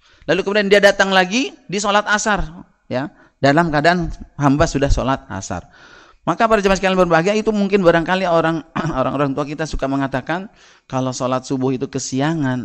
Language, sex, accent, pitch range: Indonesian, male, native, 140-210 Hz